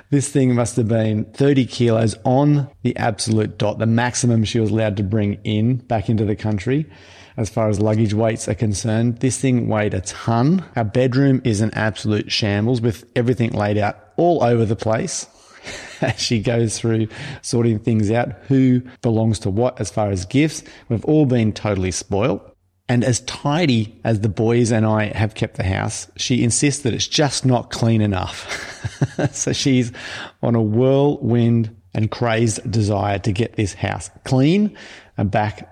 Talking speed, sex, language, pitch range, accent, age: 175 wpm, male, English, 105-125 Hz, Australian, 30-49